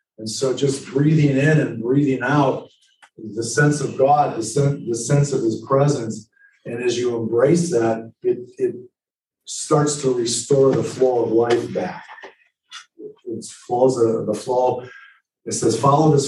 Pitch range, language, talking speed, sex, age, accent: 105-140 Hz, English, 145 wpm, male, 40-59, American